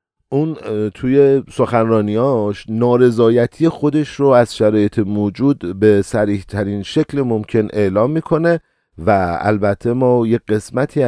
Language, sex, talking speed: Persian, male, 115 wpm